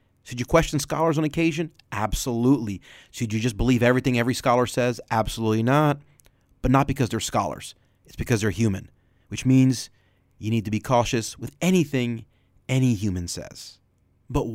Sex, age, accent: male, 30-49, American